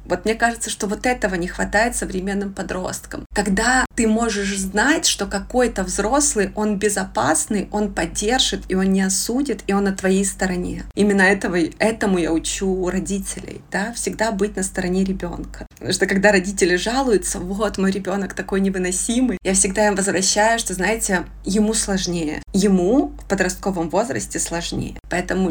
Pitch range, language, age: 185-215 Hz, Russian, 20-39